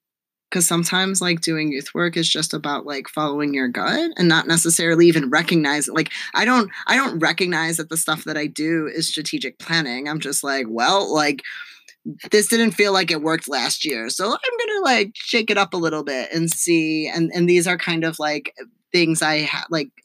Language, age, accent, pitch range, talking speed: English, 20-39, American, 145-180 Hz, 205 wpm